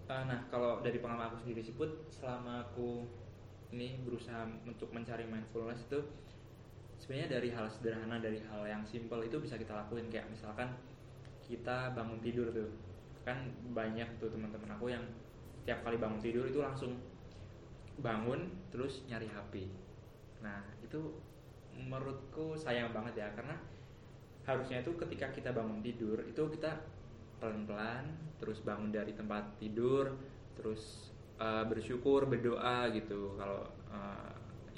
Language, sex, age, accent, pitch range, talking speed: Indonesian, male, 20-39, native, 110-125 Hz, 135 wpm